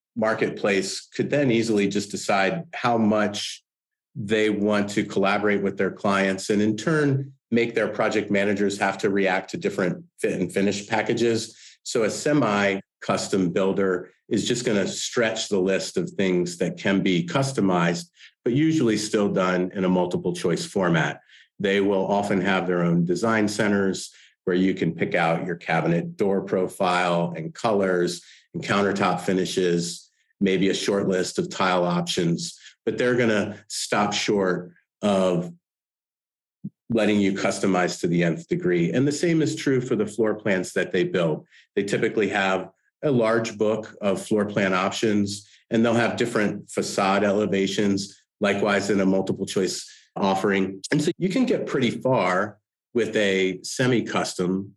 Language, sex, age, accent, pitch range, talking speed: English, male, 40-59, American, 95-110 Hz, 155 wpm